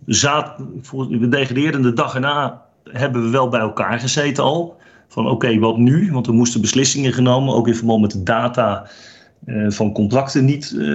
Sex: male